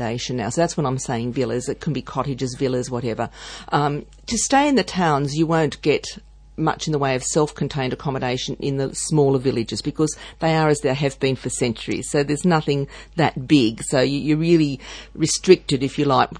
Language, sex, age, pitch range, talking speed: English, female, 50-69, 130-155 Hz, 200 wpm